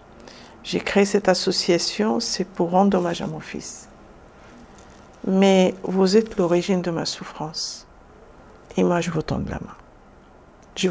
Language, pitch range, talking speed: French, 170-195 Hz, 145 wpm